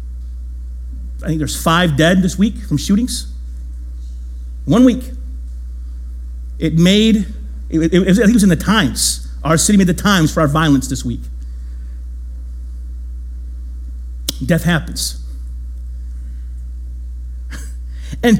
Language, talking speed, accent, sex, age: English, 115 wpm, American, male, 50-69